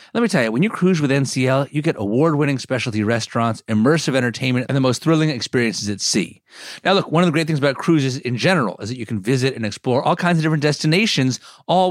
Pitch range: 120-170 Hz